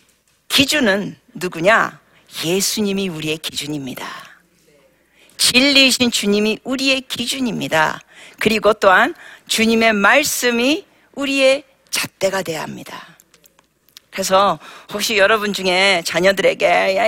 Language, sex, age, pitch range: Korean, female, 40-59, 180-255 Hz